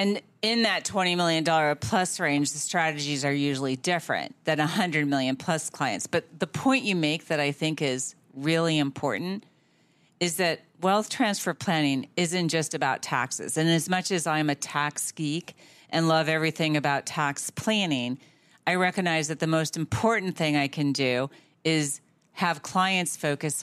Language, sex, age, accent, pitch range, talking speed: English, female, 40-59, American, 145-170 Hz, 165 wpm